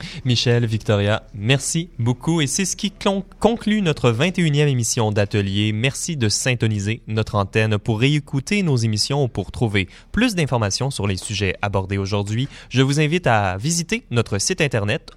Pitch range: 105-155 Hz